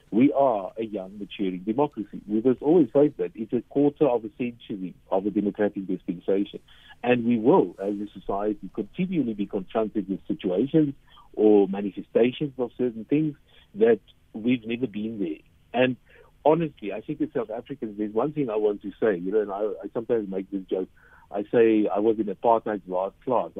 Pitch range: 105-140 Hz